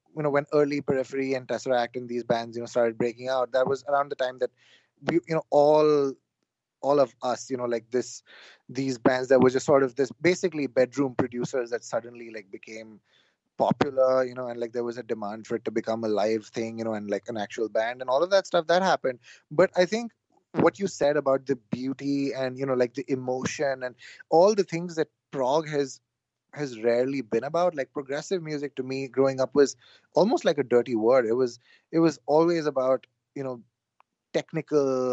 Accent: Indian